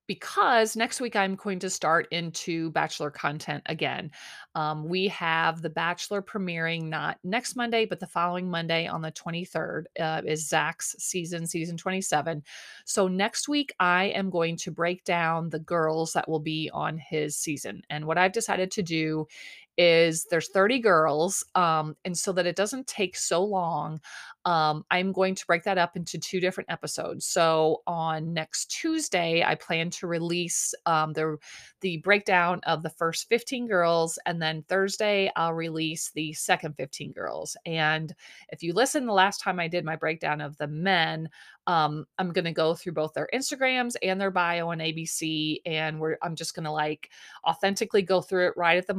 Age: 30-49